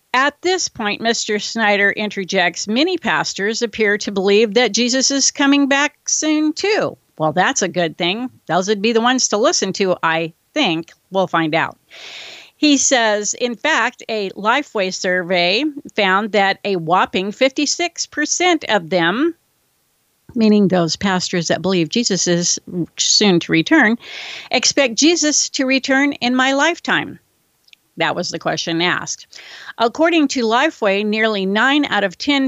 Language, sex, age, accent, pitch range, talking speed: English, female, 50-69, American, 185-260 Hz, 150 wpm